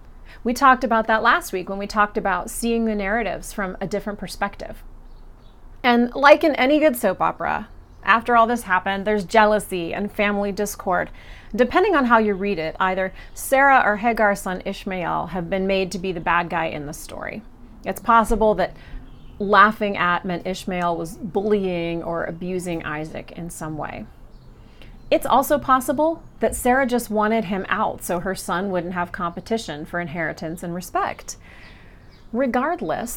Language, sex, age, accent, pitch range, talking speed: English, female, 30-49, American, 180-230 Hz, 165 wpm